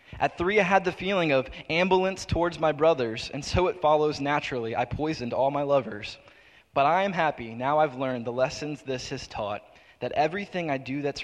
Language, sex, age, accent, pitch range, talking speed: English, male, 20-39, American, 125-150 Hz, 205 wpm